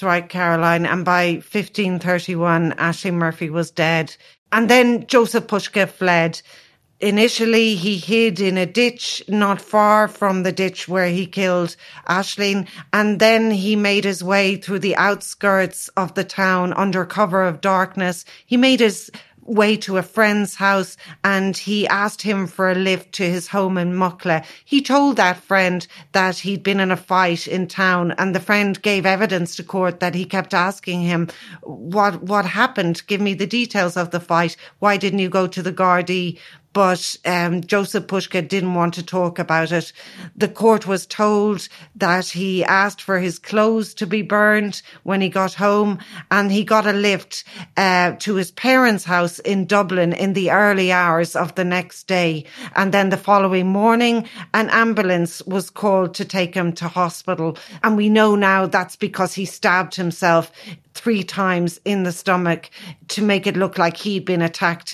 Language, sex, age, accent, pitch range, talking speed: English, female, 40-59, Irish, 180-205 Hz, 175 wpm